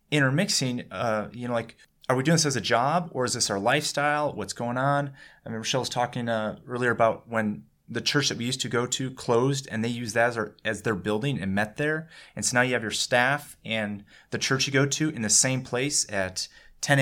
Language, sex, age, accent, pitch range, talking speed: English, male, 30-49, American, 110-145 Hz, 240 wpm